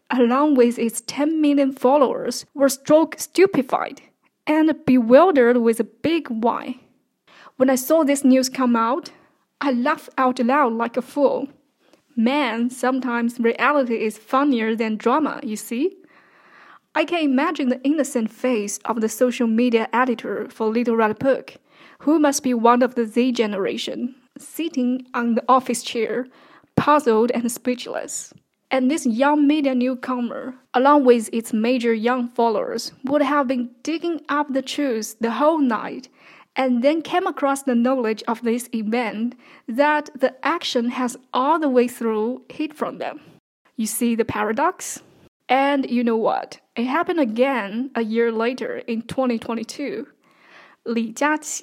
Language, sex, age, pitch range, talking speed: English, female, 10-29, 235-285 Hz, 145 wpm